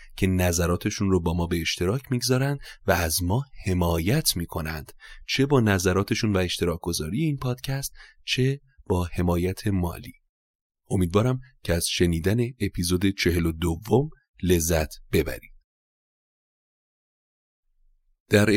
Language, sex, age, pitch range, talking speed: Persian, male, 30-49, 85-105 Hz, 115 wpm